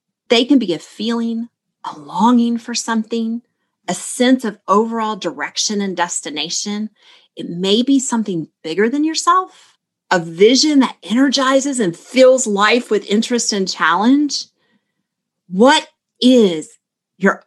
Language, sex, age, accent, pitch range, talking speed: English, female, 30-49, American, 185-255 Hz, 125 wpm